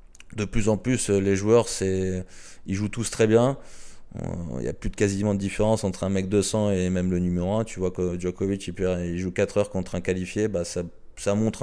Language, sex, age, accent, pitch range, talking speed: French, male, 20-39, French, 90-105 Hz, 230 wpm